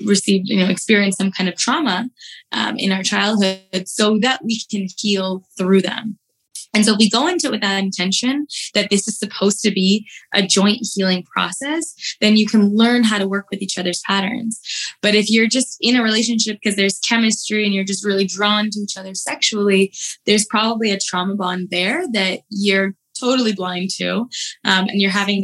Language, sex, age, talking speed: English, female, 20-39, 200 wpm